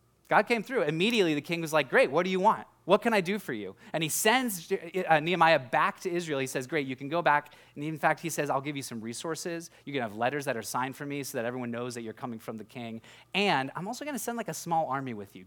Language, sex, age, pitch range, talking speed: English, male, 20-39, 125-175 Hz, 285 wpm